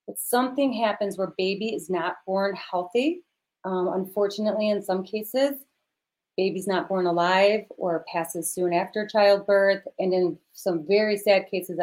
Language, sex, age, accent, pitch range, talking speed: English, female, 30-49, American, 170-200 Hz, 145 wpm